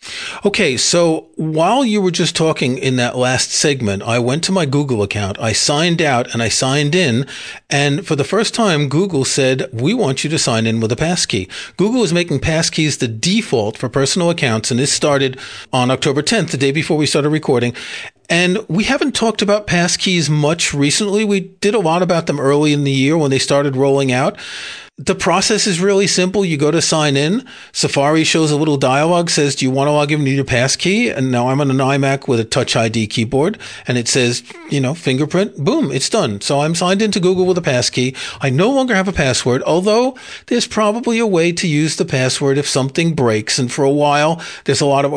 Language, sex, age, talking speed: English, male, 40-59, 220 wpm